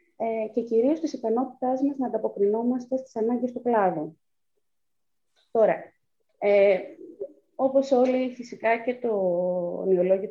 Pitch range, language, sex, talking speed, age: 190-255 Hz, Greek, female, 110 wpm, 30-49